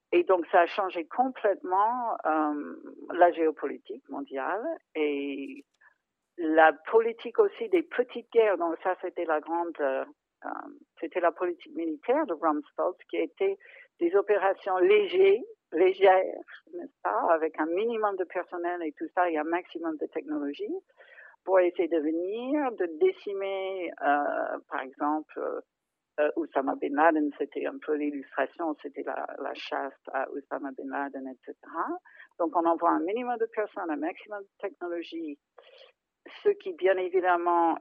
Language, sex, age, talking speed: French, female, 50-69, 145 wpm